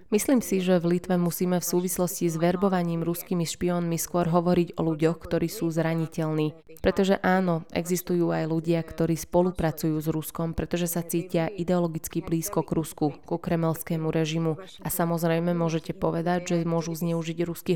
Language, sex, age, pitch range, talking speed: Slovak, female, 20-39, 160-180 Hz, 155 wpm